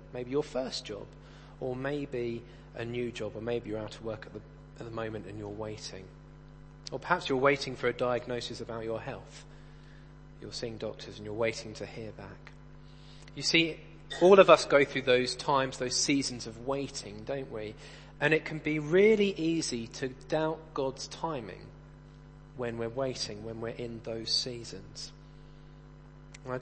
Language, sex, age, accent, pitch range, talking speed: English, male, 30-49, British, 125-155 Hz, 170 wpm